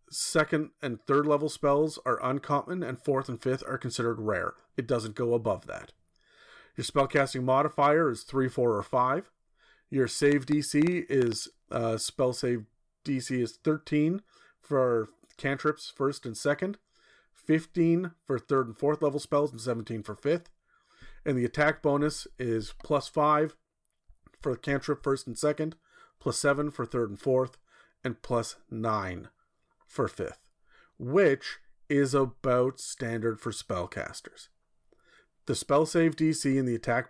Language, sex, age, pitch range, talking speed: English, male, 40-59, 120-145 Hz, 145 wpm